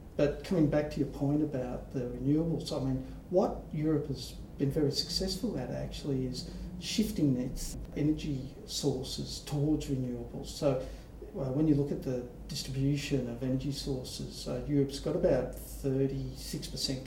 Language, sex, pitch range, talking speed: English, male, 130-150 Hz, 145 wpm